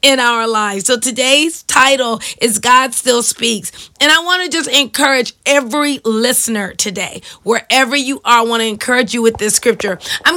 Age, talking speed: 40-59, 180 wpm